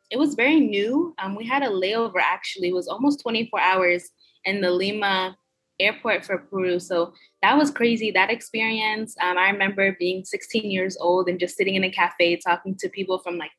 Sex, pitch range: female, 180-225 Hz